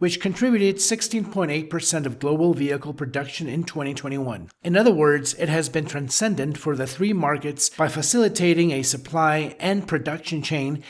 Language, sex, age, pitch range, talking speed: English, male, 40-59, 145-180 Hz, 150 wpm